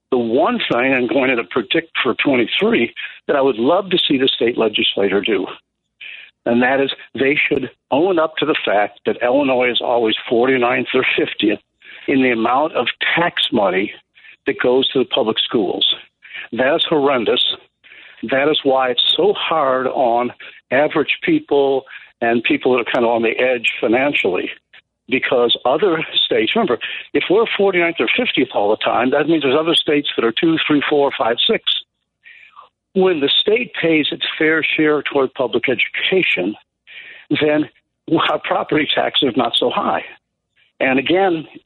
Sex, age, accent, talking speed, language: male, 60-79, American, 165 wpm, English